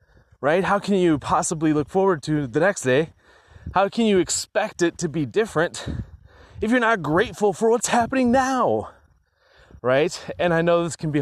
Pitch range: 130-180 Hz